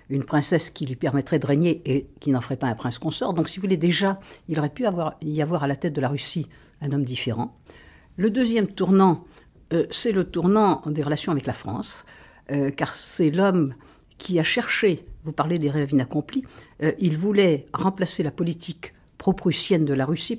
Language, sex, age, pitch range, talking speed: French, female, 60-79, 140-185 Hz, 200 wpm